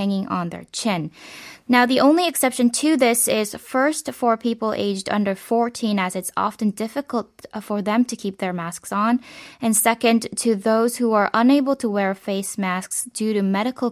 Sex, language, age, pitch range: female, Korean, 10-29, 195-240 Hz